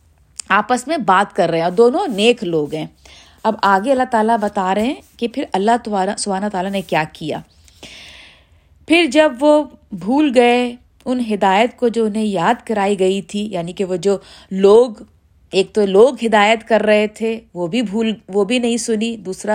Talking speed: 180 wpm